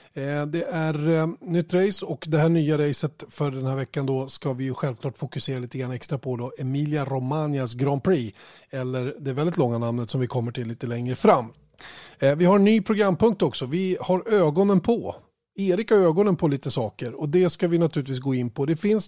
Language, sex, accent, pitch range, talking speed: Swedish, male, native, 135-170 Hz, 215 wpm